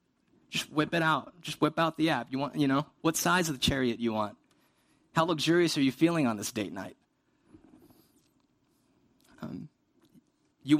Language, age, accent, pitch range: English, 30-49, American, 130-165 Hz